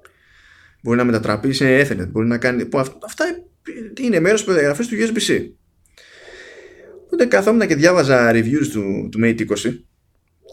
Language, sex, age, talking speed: Greek, male, 20-39, 150 wpm